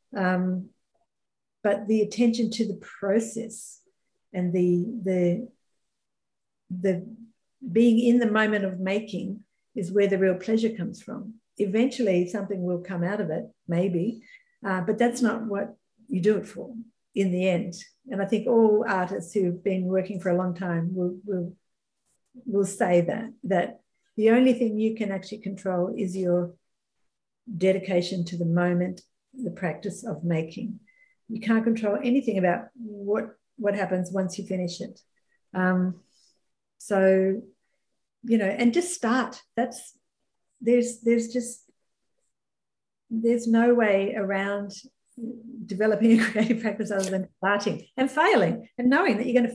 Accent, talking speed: Australian, 150 wpm